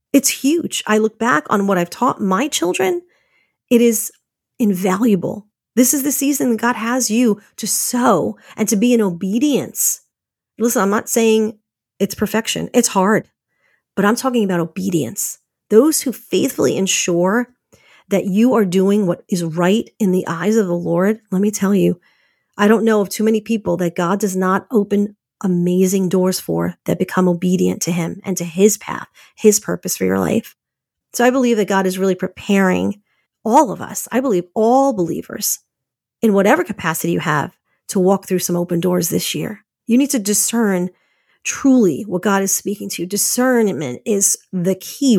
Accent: American